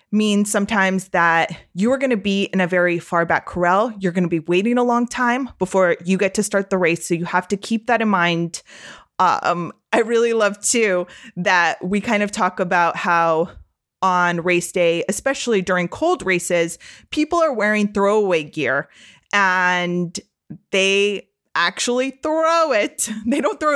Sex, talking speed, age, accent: female, 175 wpm, 20-39, American